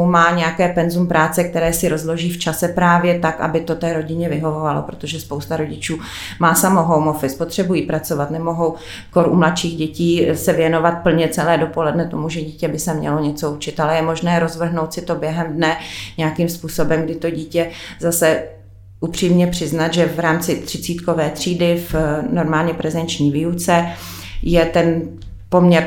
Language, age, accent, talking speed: Czech, 30-49, native, 165 wpm